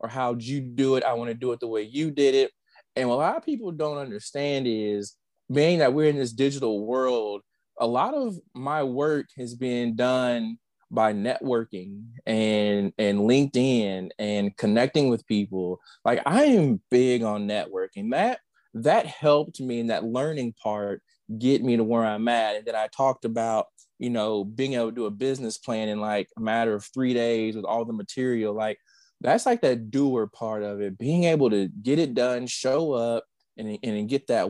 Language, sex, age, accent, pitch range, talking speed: English, male, 20-39, American, 110-135 Hz, 195 wpm